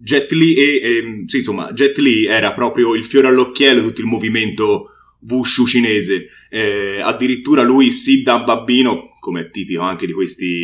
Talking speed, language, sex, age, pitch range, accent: 175 wpm, Italian, male, 20-39, 105-140 Hz, native